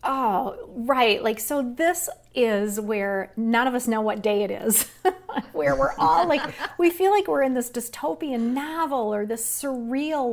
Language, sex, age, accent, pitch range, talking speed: English, female, 40-59, American, 200-265 Hz, 175 wpm